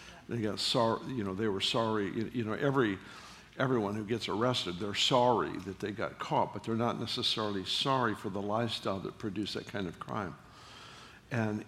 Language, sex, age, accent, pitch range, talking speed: English, male, 60-79, American, 105-125 Hz, 190 wpm